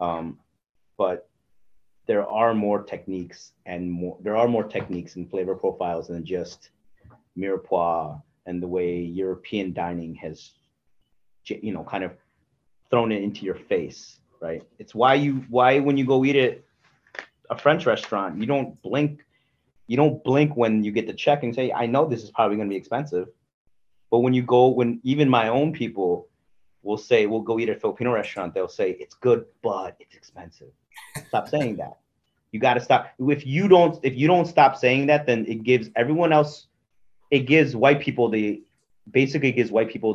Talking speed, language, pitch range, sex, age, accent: 185 wpm, English, 105-140 Hz, male, 30-49, American